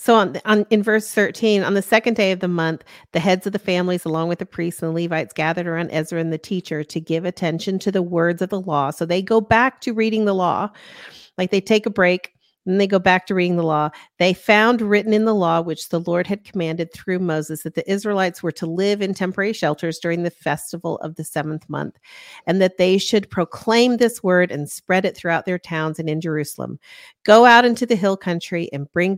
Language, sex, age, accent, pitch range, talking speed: English, female, 40-59, American, 160-200 Hz, 235 wpm